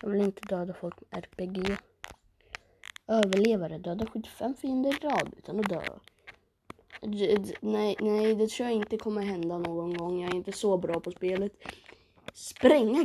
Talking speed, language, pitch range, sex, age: 165 wpm, Swedish, 175-220 Hz, female, 20-39